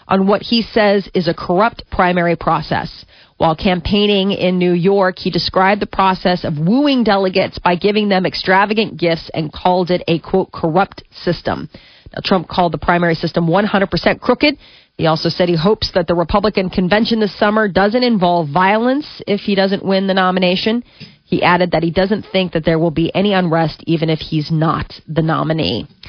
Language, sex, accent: English, female, American